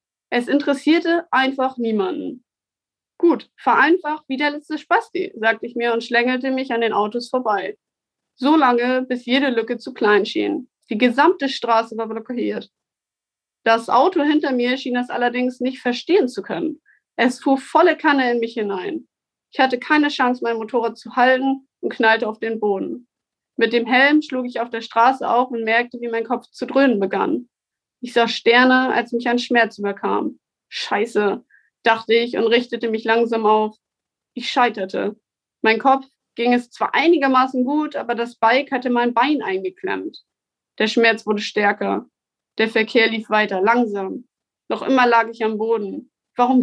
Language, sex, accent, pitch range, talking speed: German, female, German, 225-265 Hz, 165 wpm